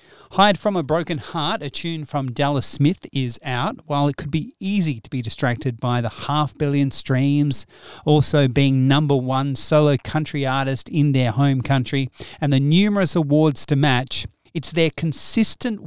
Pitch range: 125-150 Hz